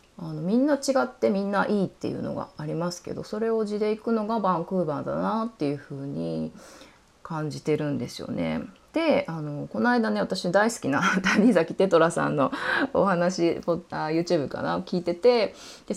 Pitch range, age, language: 155-230 Hz, 20-39, Japanese